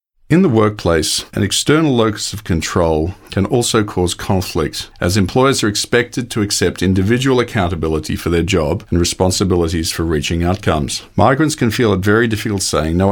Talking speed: 165 wpm